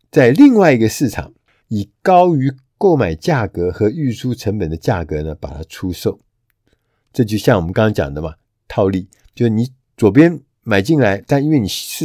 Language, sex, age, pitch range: Chinese, male, 50-69, 105-155 Hz